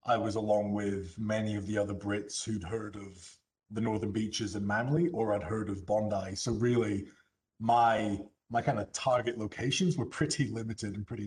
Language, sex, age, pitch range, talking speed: English, male, 30-49, 105-120 Hz, 185 wpm